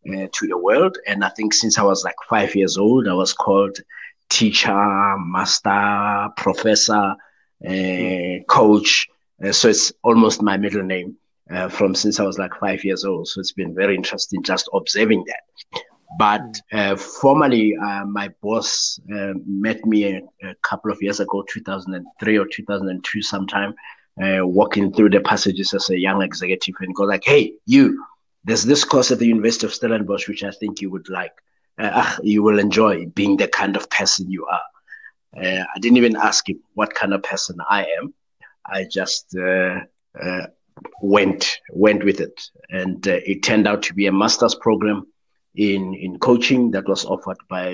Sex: male